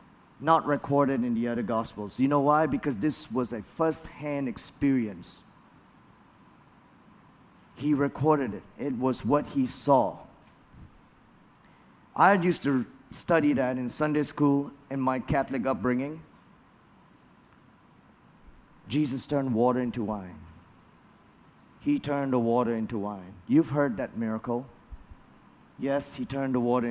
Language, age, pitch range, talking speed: English, 50-69, 120-150 Hz, 125 wpm